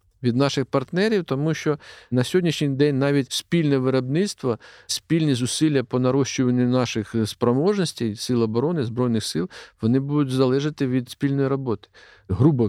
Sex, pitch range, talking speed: male, 120-150 Hz, 130 wpm